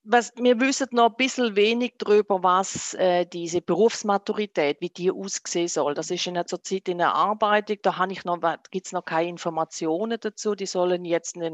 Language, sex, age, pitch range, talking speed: German, female, 40-59, 170-210 Hz, 210 wpm